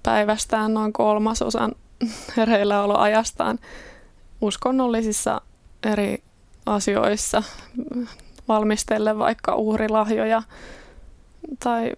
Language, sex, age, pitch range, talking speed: Finnish, female, 20-39, 205-230 Hz, 55 wpm